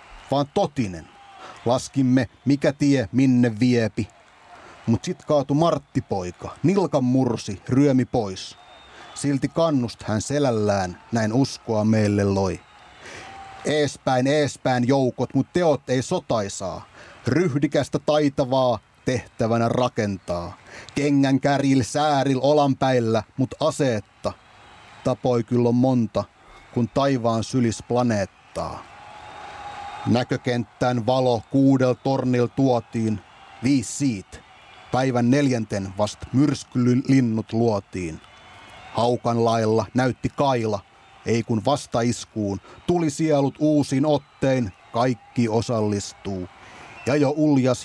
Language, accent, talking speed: Finnish, native, 95 wpm